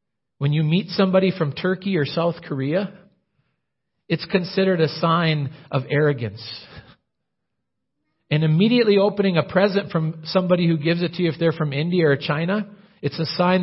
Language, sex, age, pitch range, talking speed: English, male, 40-59, 135-170 Hz, 160 wpm